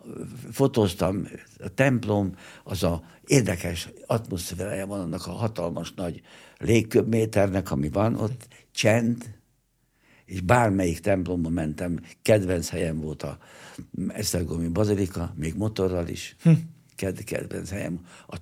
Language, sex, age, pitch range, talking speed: Hungarian, male, 60-79, 90-115 Hz, 105 wpm